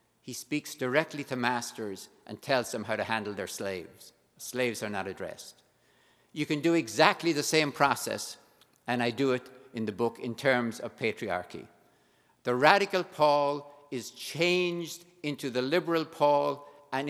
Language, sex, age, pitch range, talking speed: English, male, 60-79, 125-170 Hz, 160 wpm